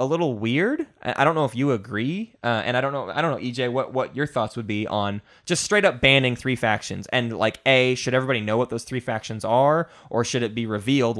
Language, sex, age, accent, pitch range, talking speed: English, male, 20-39, American, 110-140 Hz, 250 wpm